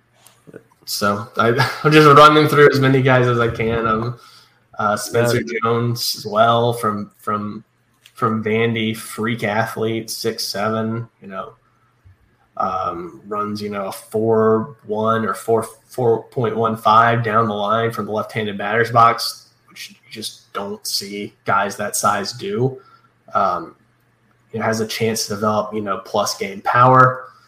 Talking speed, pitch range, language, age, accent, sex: 145 wpm, 110-120 Hz, English, 20-39, American, male